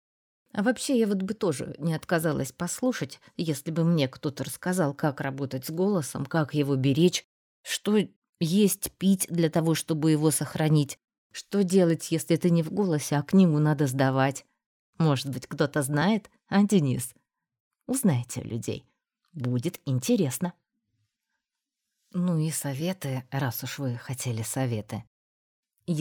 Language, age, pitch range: Russian, 20-39, 130-165 Hz